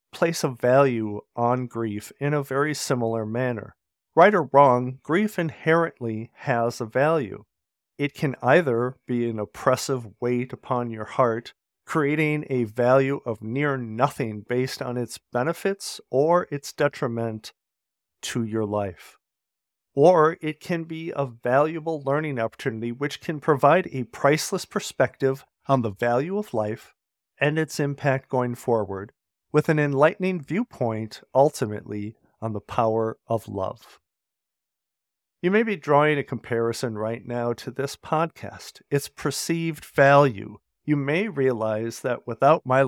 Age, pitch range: 50-69, 115-145 Hz